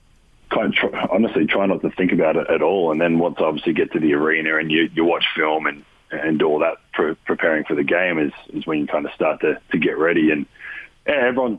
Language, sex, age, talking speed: English, male, 30-49, 240 wpm